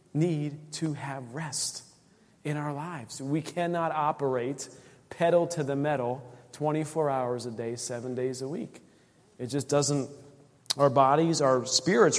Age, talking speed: 40-59, 145 wpm